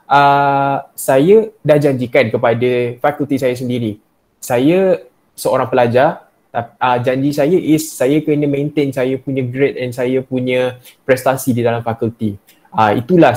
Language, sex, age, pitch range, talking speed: Malay, male, 10-29, 125-145 Hz, 135 wpm